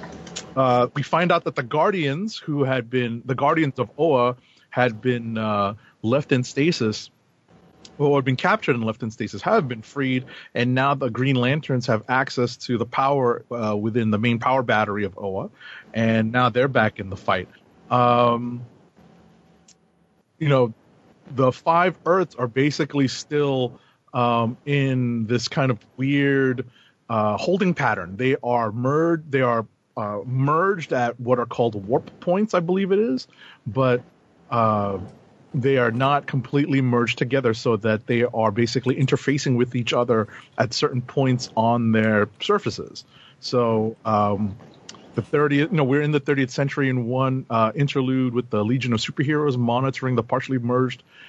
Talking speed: 160 wpm